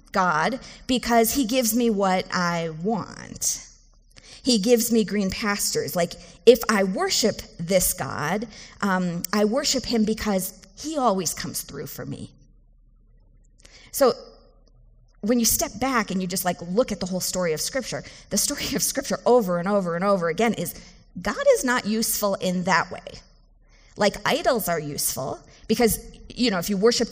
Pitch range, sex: 180-230 Hz, female